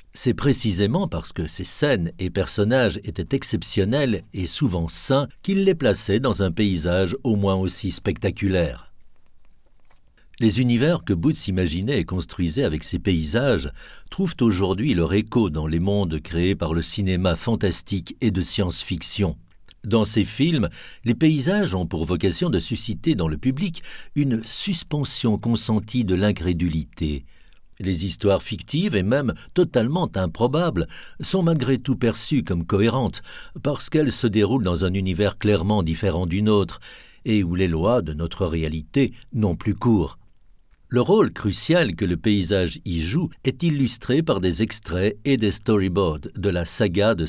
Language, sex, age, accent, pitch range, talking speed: French, male, 60-79, French, 90-120 Hz, 155 wpm